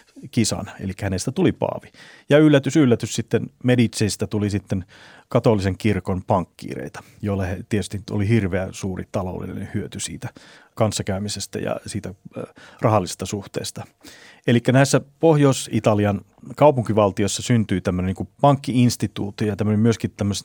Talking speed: 125 wpm